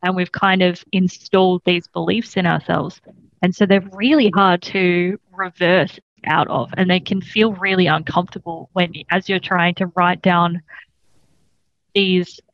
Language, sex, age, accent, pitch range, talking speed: English, female, 20-39, Australian, 175-200 Hz, 155 wpm